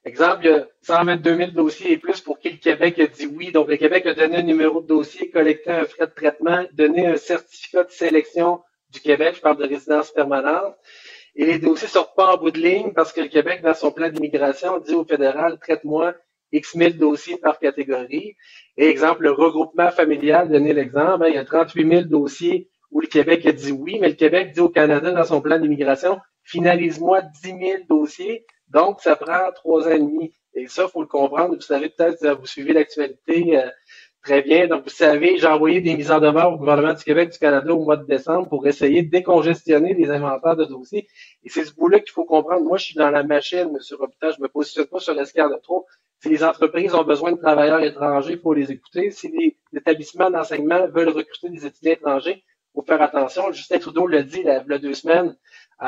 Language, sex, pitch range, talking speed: French, male, 150-175 Hz, 220 wpm